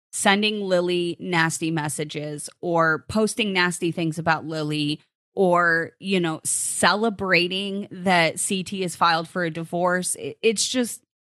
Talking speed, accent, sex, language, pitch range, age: 125 wpm, American, female, English, 165-200 Hz, 30-49